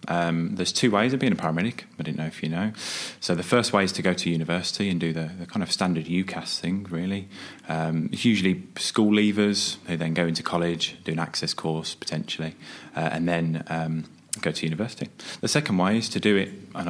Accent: British